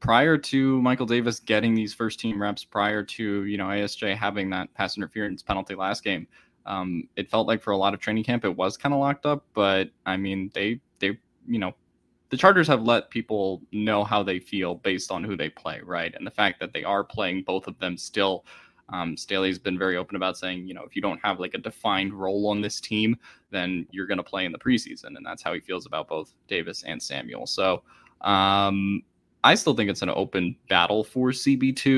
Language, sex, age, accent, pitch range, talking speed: English, male, 10-29, American, 95-115 Hz, 225 wpm